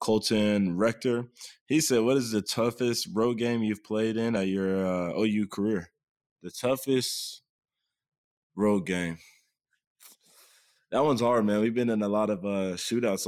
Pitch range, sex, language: 100-120 Hz, male, English